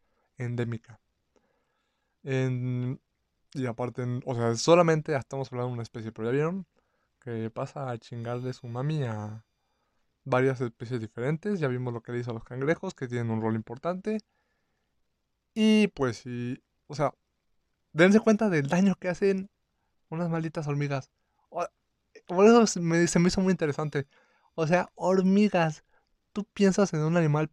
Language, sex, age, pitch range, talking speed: Spanish, male, 20-39, 120-165 Hz, 155 wpm